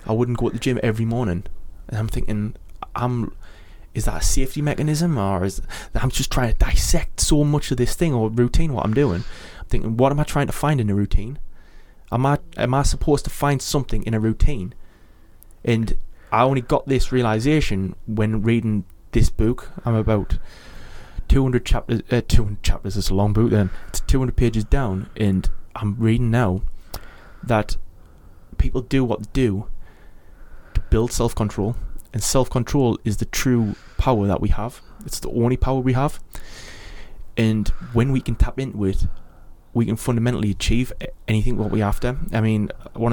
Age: 20-39